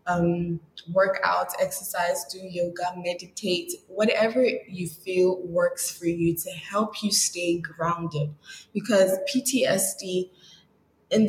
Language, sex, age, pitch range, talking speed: English, female, 20-39, 175-200 Hz, 110 wpm